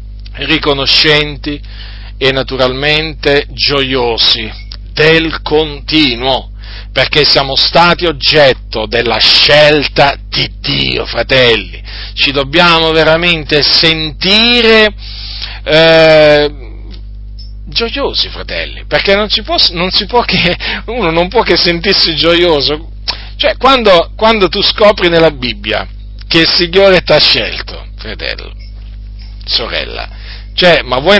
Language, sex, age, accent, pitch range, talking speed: Italian, male, 40-59, native, 110-175 Hz, 100 wpm